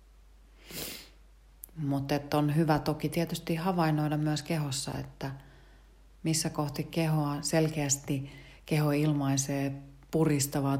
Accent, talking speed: native, 90 wpm